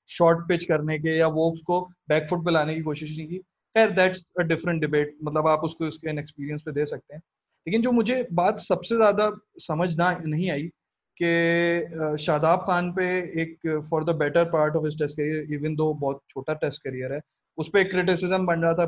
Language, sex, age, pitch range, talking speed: Urdu, male, 20-39, 155-180 Hz, 205 wpm